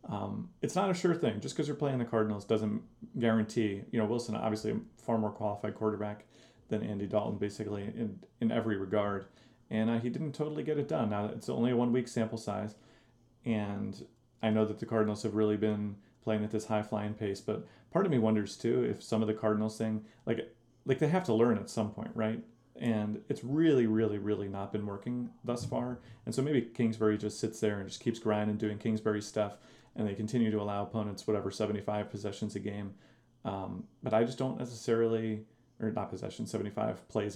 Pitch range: 105-120 Hz